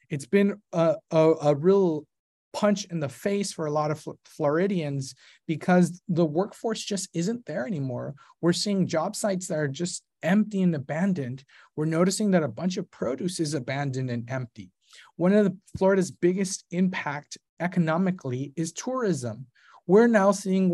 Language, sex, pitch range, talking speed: English, male, 145-195 Hz, 155 wpm